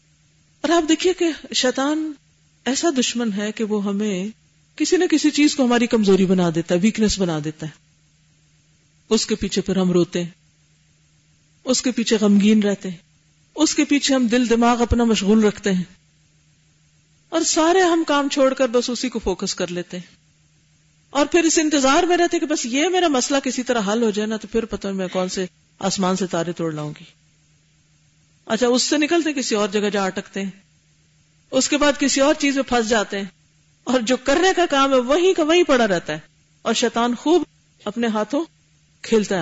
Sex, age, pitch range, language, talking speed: female, 50-69, 155-260 Hz, Urdu, 200 wpm